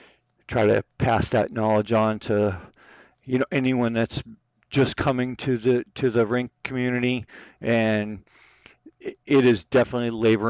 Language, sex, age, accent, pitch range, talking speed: English, male, 50-69, American, 105-125 Hz, 135 wpm